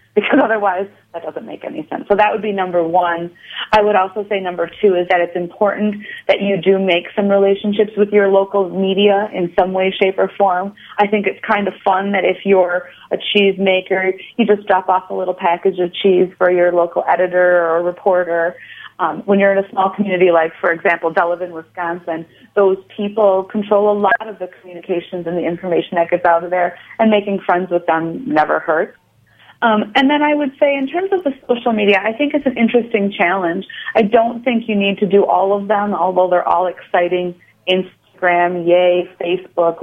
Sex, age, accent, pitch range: female, 30-49, American, 180-210 Hz